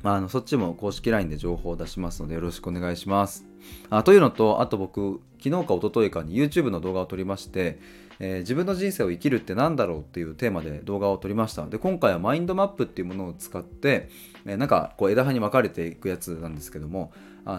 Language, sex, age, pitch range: Japanese, male, 20-39, 85-130 Hz